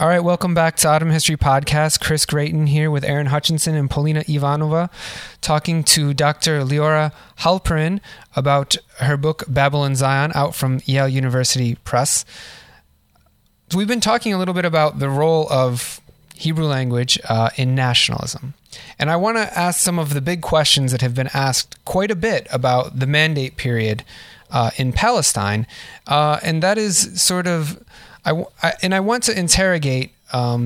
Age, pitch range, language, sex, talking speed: 30-49, 125-160 Hz, English, male, 160 wpm